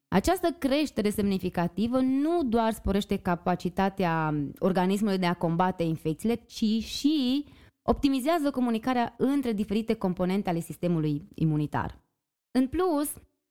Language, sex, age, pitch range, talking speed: Romanian, female, 20-39, 180-255 Hz, 105 wpm